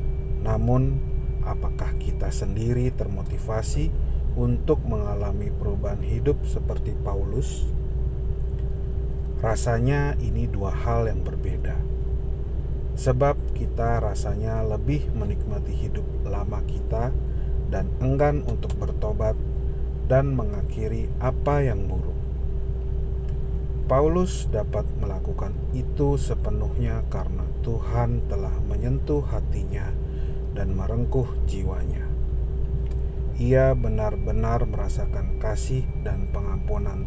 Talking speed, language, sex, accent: 85 wpm, Indonesian, male, native